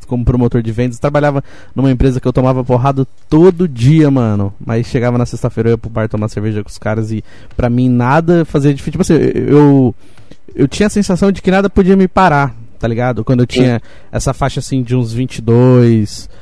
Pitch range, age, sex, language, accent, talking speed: 120-175 Hz, 20-39, male, Portuguese, Brazilian, 210 wpm